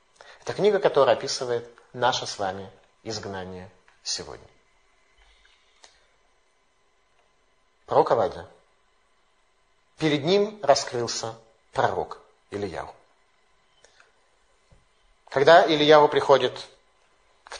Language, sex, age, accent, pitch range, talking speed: Russian, male, 30-49, native, 120-165 Hz, 70 wpm